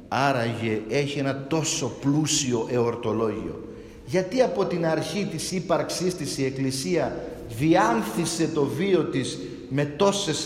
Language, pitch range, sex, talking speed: Greek, 135-180 Hz, male, 120 wpm